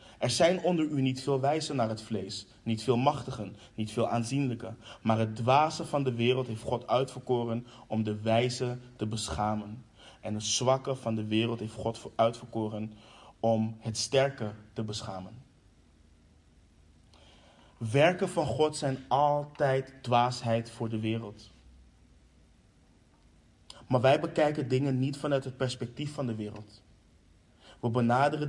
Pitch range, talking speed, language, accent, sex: 110-130 Hz, 140 wpm, Dutch, Dutch, male